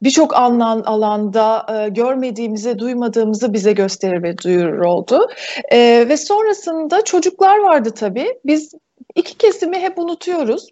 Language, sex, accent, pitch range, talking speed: Turkish, female, native, 235-355 Hz, 125 wpm